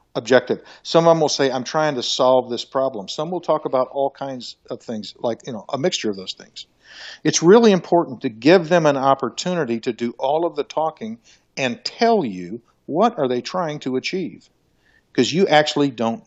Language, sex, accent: English, male, American